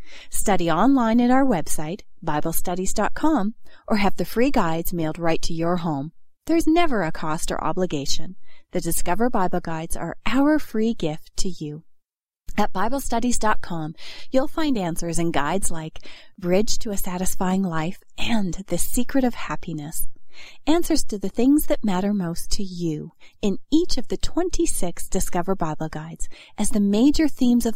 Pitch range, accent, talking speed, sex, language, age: 170-245 Hz, American, 155 wpm, female, English, 30-49